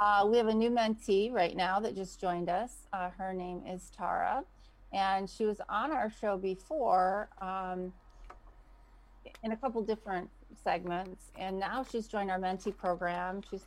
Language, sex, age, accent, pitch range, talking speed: English, female, 30-49, American, 175-195 Hz, 165 wpm